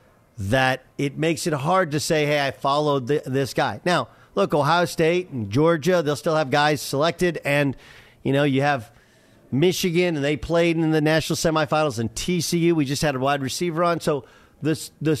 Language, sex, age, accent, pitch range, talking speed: English, male, 50-69, American, 135-175 Hz, 185 wpm